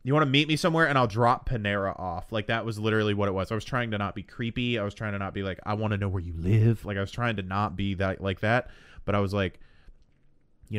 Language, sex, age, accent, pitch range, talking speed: English, male, 30-49, American, 95-120 Hz, 300 wpm